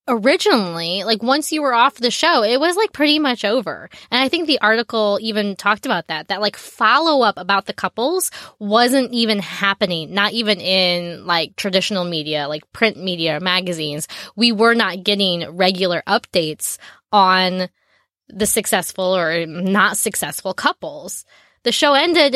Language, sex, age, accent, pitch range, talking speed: English, female, 20-39, American, 185-250 Hz, 155 wpm